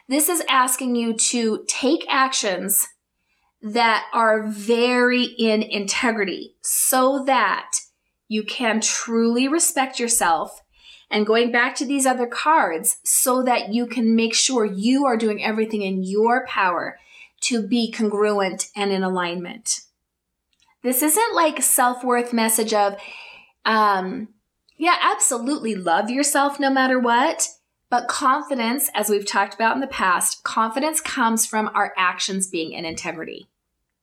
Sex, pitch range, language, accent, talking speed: female, 210-265 Hz, English, American, 135 wpm